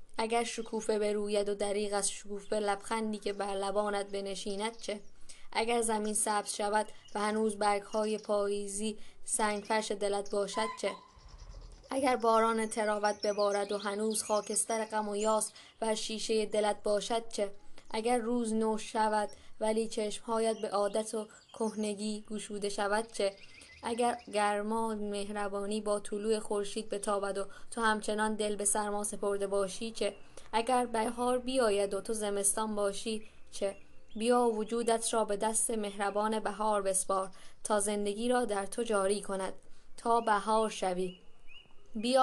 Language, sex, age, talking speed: Persian, female, 10-29, 135 wpm